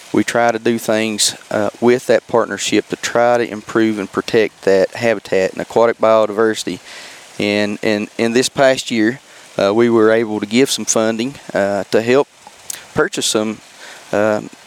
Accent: American